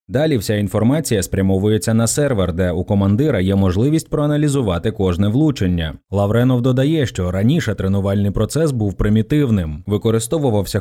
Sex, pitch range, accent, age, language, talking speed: male, 95-130 Hz, native, 20-39, Ukrainian, 130 wpm